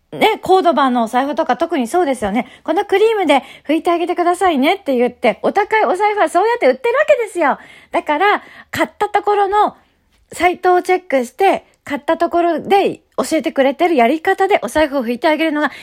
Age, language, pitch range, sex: 40-59, Japanese, 235-390 Hz, female